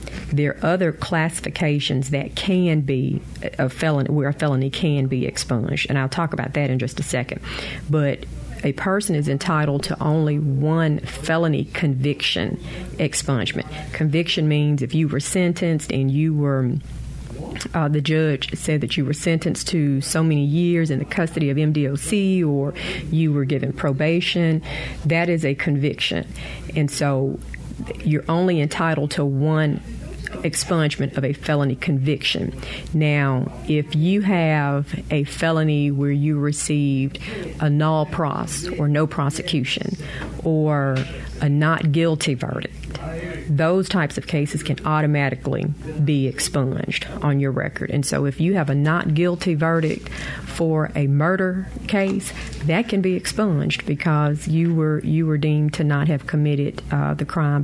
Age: 40-59